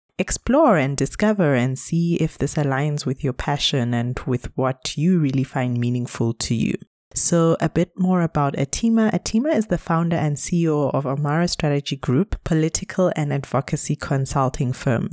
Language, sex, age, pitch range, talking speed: English, female, 20-39, 140-175 Hz, 165 wpm